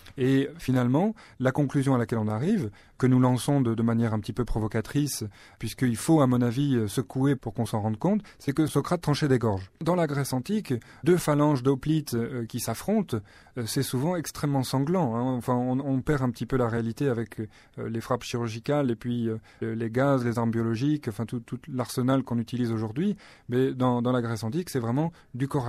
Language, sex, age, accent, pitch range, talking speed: French, male, 30-49, French, 120-145 Hz, 200 wpm